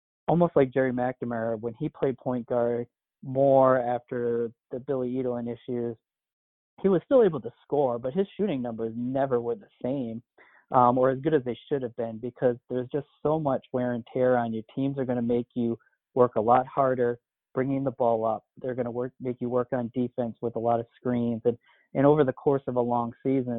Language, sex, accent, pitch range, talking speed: English, male, American, 120-135 Hz, 215 wpm